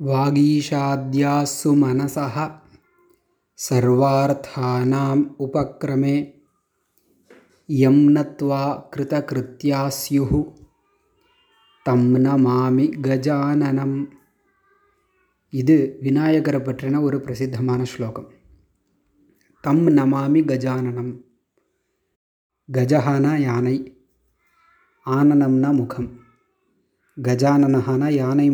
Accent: native